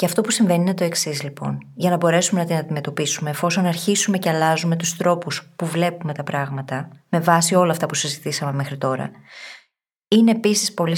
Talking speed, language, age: 190 wpm, Greek, 20-39